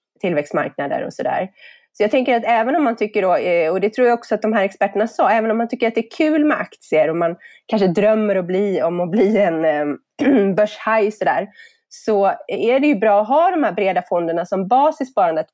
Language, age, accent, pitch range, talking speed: Swedish, 20-39, native, 170-225 Hz, 225 wpm